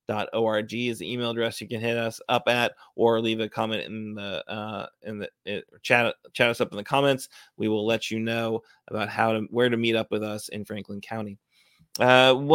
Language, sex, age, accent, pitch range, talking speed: English, male, 30-49, American, 115-135 Hz, 215 wpm